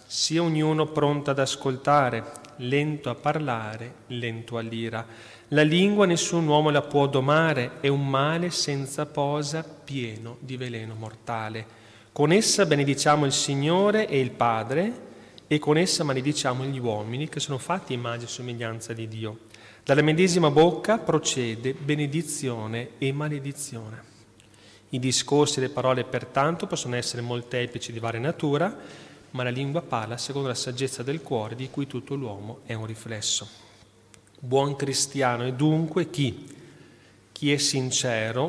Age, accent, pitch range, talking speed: 30-49, native, 120-150 Hz, 140 wpm